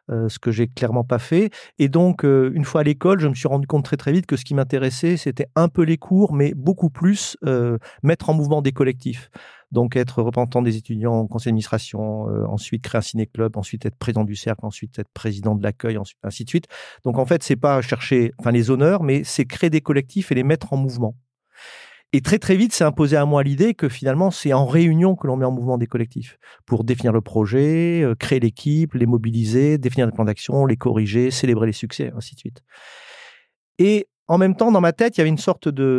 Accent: French